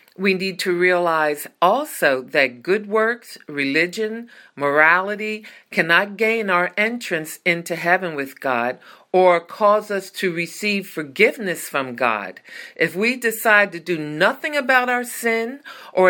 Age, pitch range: 50-69, 165-220 Hz